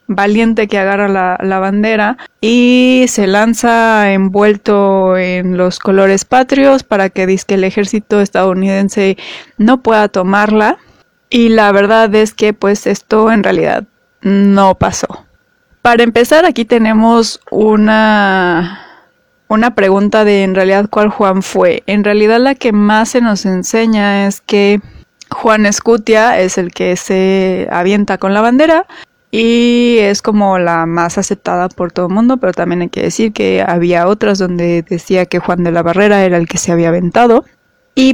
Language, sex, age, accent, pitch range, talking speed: Spanish, female, 20-39, Mexican, 195-225 Hz, 155 wpm